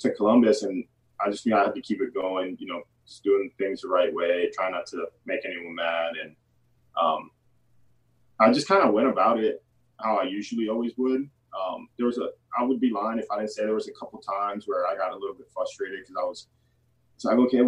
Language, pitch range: English, 100-125 Hz